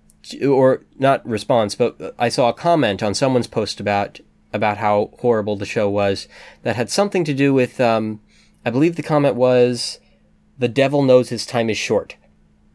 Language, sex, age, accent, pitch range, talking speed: English, male, 20-39, American, 110-140 Hz, 175 wpm